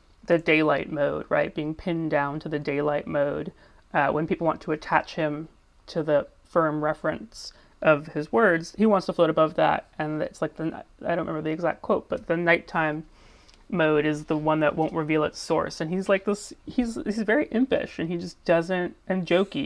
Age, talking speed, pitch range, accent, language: 30-49, 205 wpm, 150-170 Hz, American, English